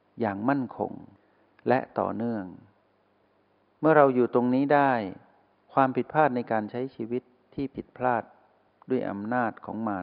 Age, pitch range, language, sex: 60-79, 100-125 Hz, Thai, male